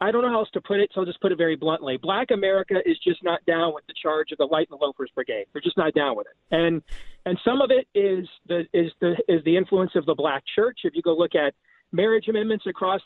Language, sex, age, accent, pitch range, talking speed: English, male, 40-59, American, 170-215 Hz, 280 wpm